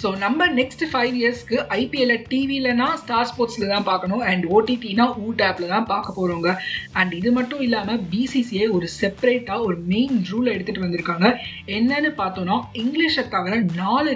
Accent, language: native, Tamil